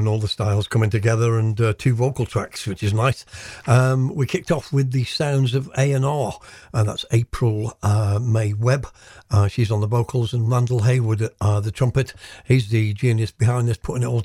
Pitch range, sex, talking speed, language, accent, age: 105-120 Hz, male, 200 wpm, English, British, 60-79